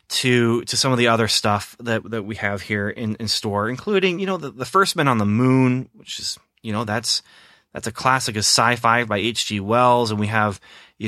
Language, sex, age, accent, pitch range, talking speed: English, male, 30-49, American, 100-130 Hz, 235 wpm